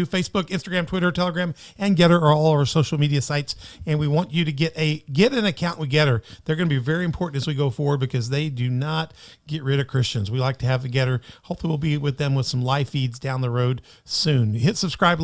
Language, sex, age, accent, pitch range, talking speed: English, male, 40-59, American, 140-180 Hz, 250 wpm